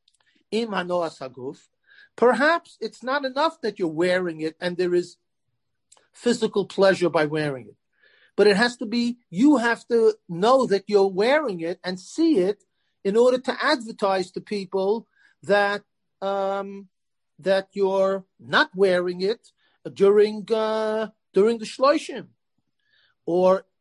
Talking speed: 130 wpm